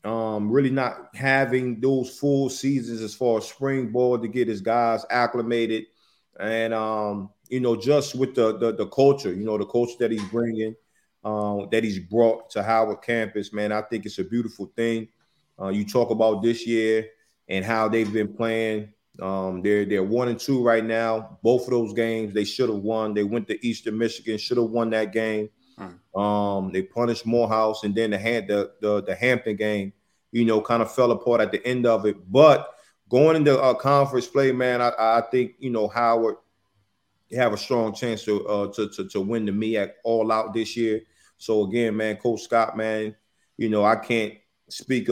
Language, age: English, 30-49